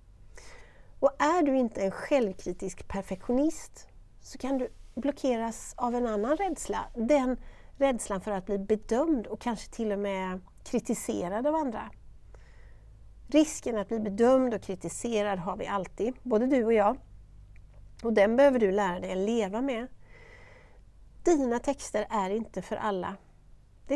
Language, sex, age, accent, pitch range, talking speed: Swedish, female, 60-79, native, 190-270 Hz, 145 wpm